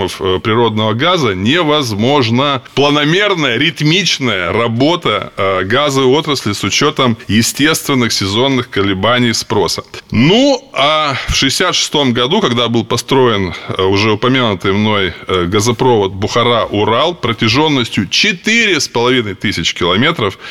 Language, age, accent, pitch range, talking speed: Russian, 20-39, native, 105-150 Hz, 90 wpm